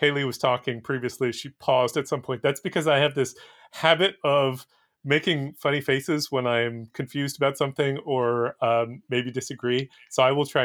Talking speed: 180 wpm